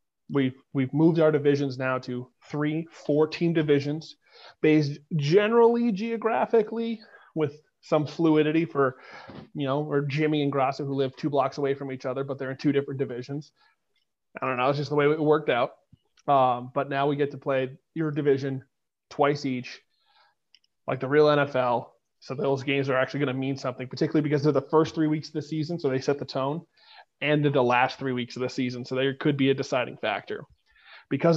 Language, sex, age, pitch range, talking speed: English, male, 30-49, 135-155 Hz, 195 wpm